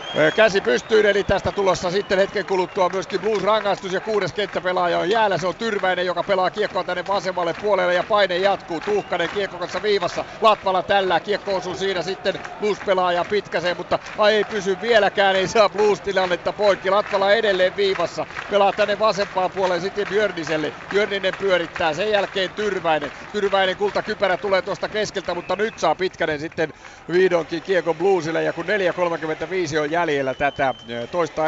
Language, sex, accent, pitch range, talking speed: Finnish, male, native, 155-195 Hz, 155 wpm